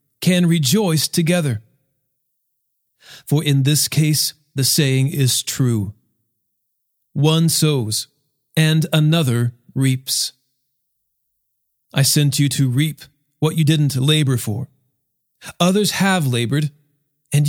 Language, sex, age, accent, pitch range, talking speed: English, male, 40-59, American, 125-170 Hz, 105 wpm